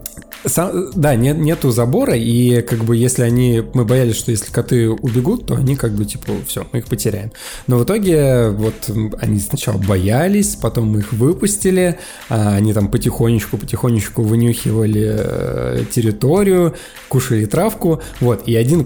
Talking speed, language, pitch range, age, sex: 145 wpm, Russian, 110-130 Hz, 20-39, male